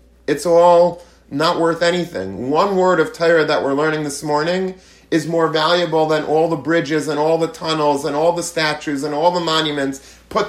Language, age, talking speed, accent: English, 40-59, 195 wpm, American